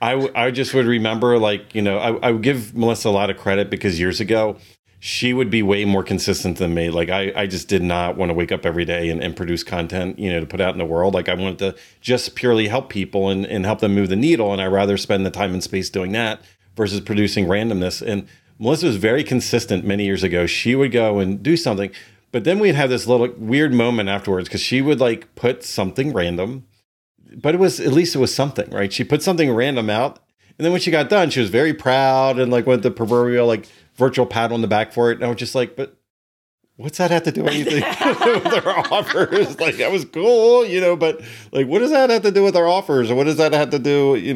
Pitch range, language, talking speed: 100-135 Hz, English, 255 wpm